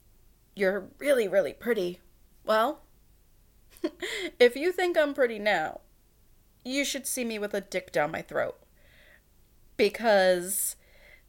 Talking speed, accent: 115 wpm, American